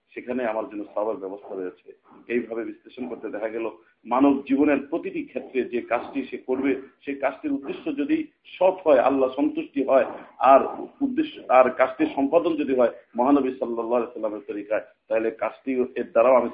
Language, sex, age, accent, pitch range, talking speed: Bengali, male, 50-69, native, 120-185 Hz, 35 wpm